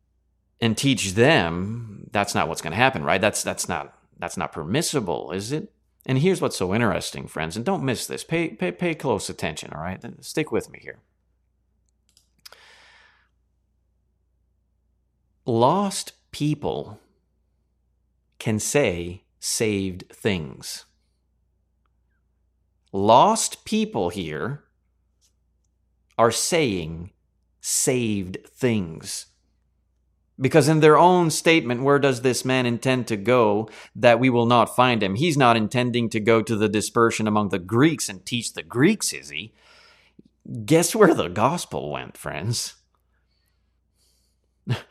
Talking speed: 125 wpm